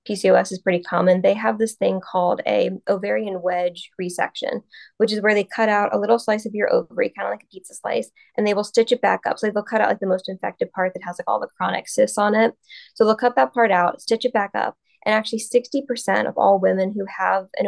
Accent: American